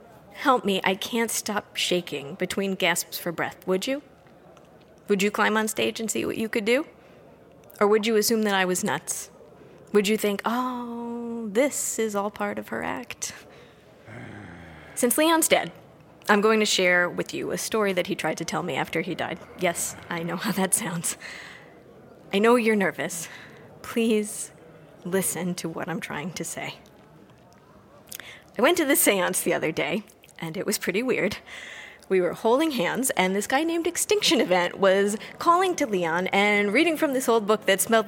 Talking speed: 180 wpm